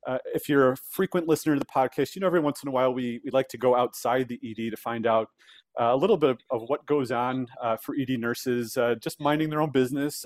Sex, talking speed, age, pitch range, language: male, 270 wpm, 30-49, 125-155 Hz, English